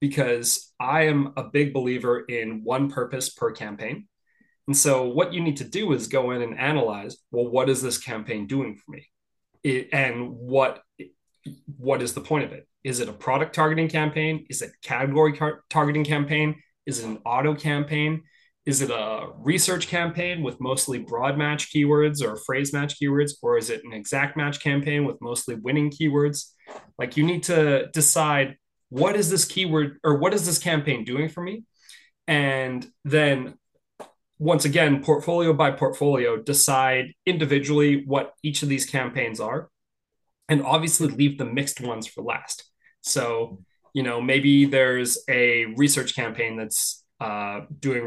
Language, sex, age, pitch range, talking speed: English, male, 30-49, 125-150 Hz, 165 wpm